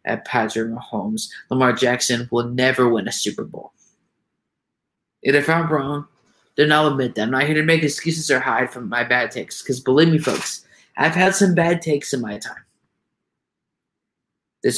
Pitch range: 120-145 Hz